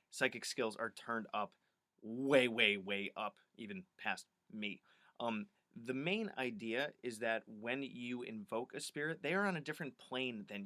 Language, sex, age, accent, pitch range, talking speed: English, male, 30-49, American, 115-185 Hz, 170 wpm